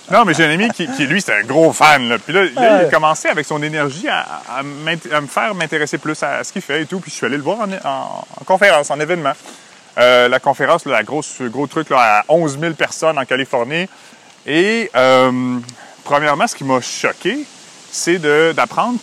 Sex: male